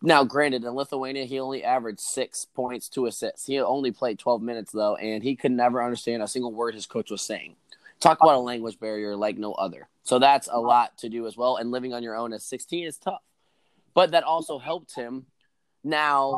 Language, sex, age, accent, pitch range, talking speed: English, male, 20-39, American, 120-155 Hz, 220 wpm